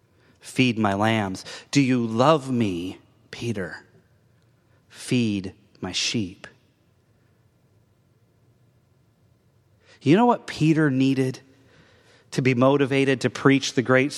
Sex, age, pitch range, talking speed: male, 30-49, 115-155 Hz, 95 wpm